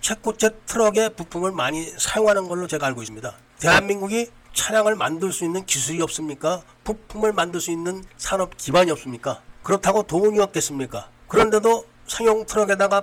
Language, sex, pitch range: Korean, male, 160-210 Hz